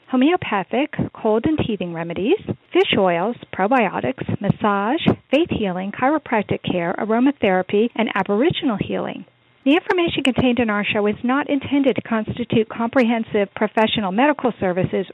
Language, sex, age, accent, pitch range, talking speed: English, female, 50-69, American, 210-280 Hz, 125 wpm